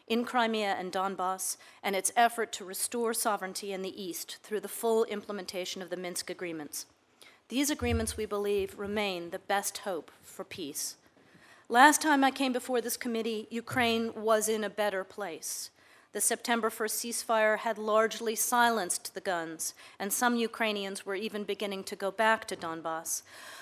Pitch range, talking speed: 195-235 Hz, 165 wpm